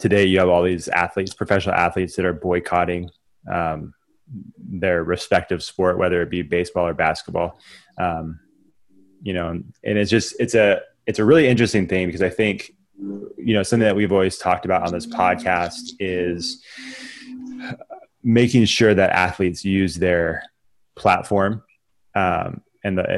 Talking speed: 150 wpm